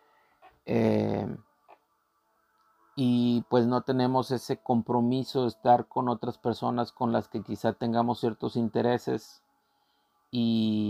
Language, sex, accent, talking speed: Spanish, male, Mexican, 110 wpm